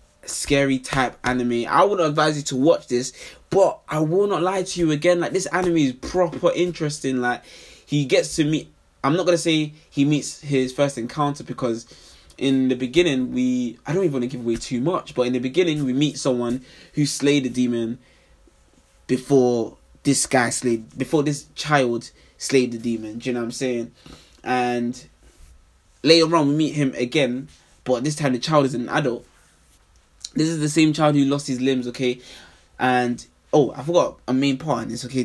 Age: 20-39